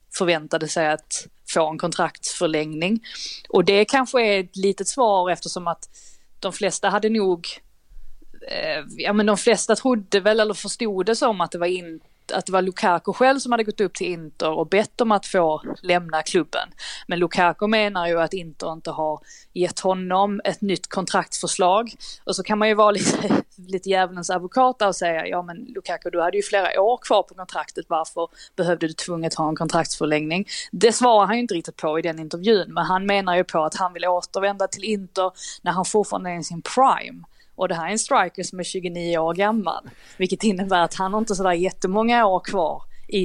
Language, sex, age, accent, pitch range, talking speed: Swedish, female, 20-39, native, 170-210 Hz, 200 wpm